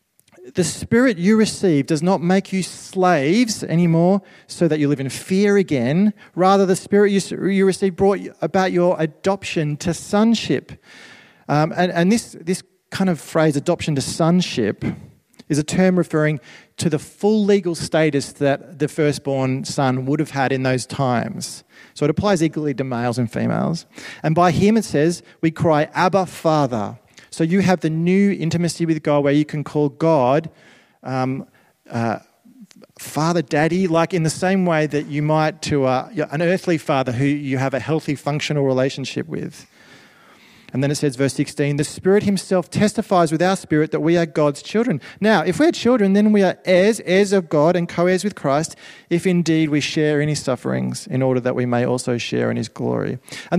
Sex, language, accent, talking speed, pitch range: male, English, Australian, 185 wpm, 145-190 Hz